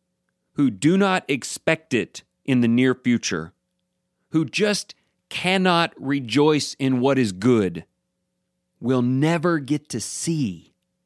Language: English